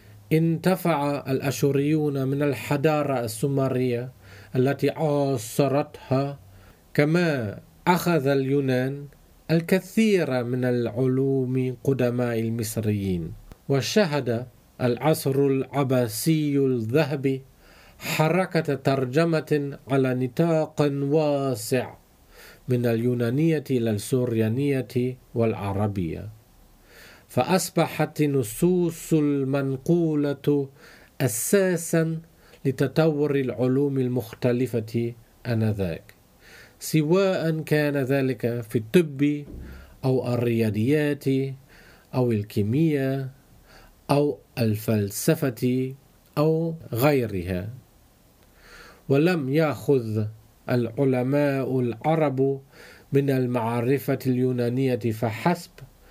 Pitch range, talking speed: 120-150 Hz, 60 wpm